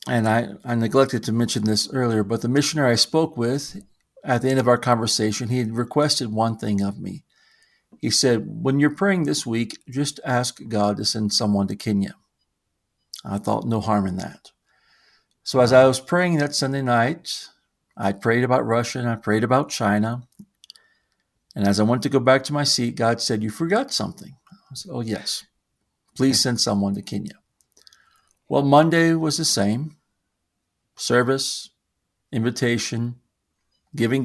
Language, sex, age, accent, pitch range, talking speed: English, male, 50-69, American, 105-135 Hz, 170 wpm